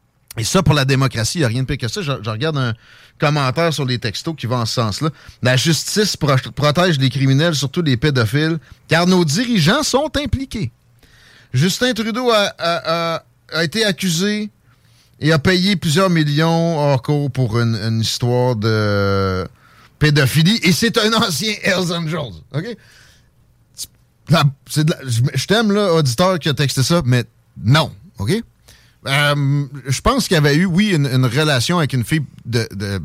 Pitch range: 125-170 Hz